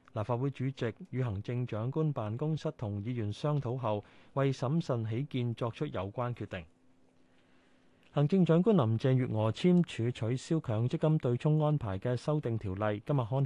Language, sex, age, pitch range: Chinese, male, 20-39, 110-150 Hz